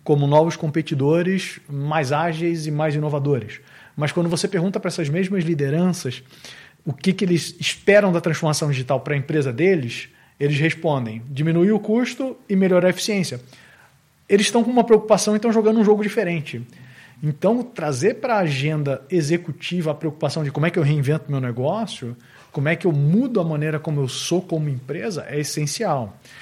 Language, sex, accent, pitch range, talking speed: Portuguese, male, Brazilian, 145-195 Hz, 175 wpm